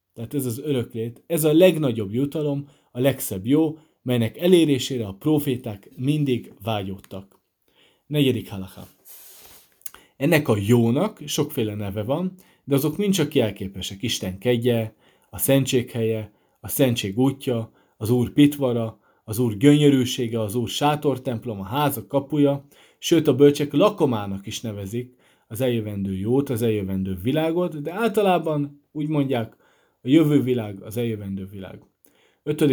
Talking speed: 130 wpm